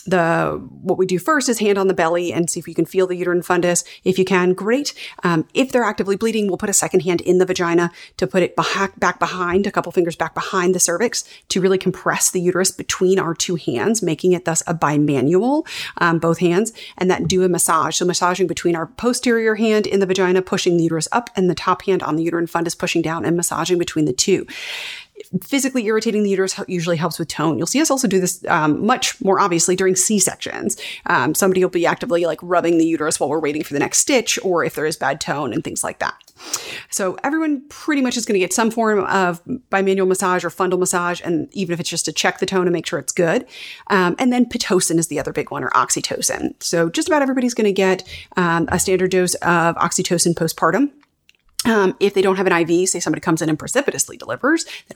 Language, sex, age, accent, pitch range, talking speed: English, female, 30-49, American, 170-205 Hz, 235 wpm